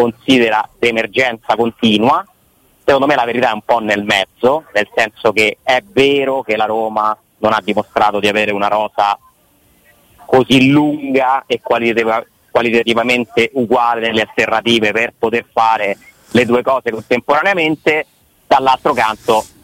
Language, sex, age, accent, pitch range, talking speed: Italian, male, 30-49, native, 110-130 Hz, 130 wpm